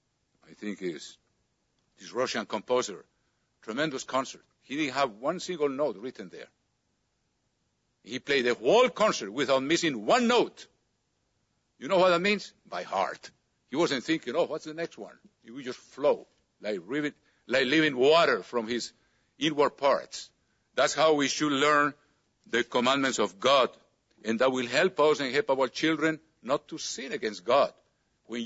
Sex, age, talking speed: male, 60-79, 160 wpm